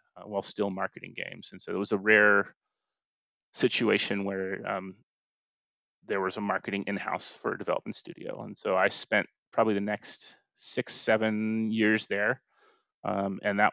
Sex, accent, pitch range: male, American, 95-110 Hz